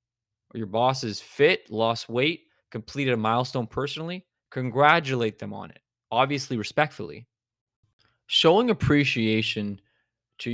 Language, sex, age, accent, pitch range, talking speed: English, male, 20-39, American, 105-125 Hz, 110 wpm